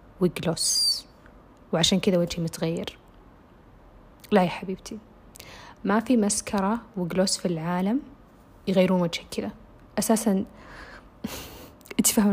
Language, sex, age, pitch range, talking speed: Arabic, female, 20-39, 180-215 Hz, 95 wpm